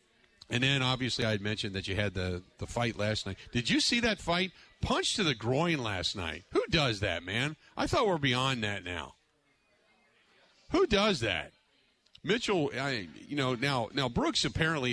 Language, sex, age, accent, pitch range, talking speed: English, male, 40-59, American, 115-155 Hz, 185 wpm